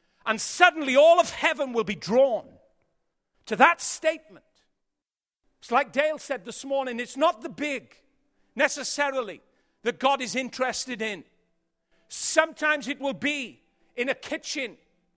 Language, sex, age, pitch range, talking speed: English, male, 50-69, 230-310 Hz, 135 wpm